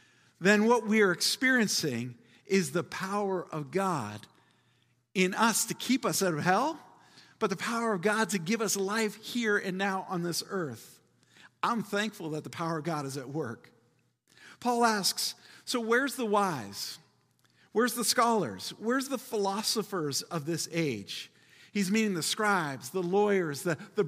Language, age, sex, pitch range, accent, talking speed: English, 50-69, male, 160-215 Hz, American, 165 wpm